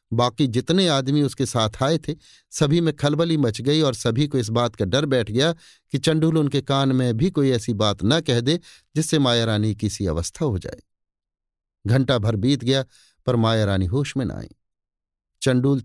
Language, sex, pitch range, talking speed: Hindi, male, 105-140 Hz, 195 wpm